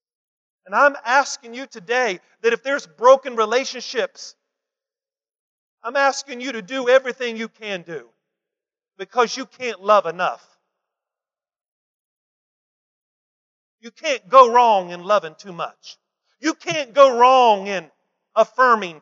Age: 40-59